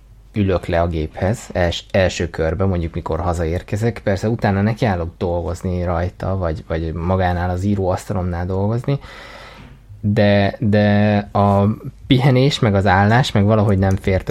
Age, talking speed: 20-39, 130 wpm